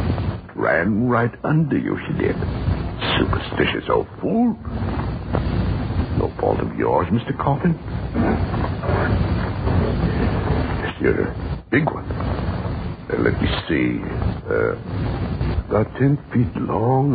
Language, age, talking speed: English, 60-79, 100 wpm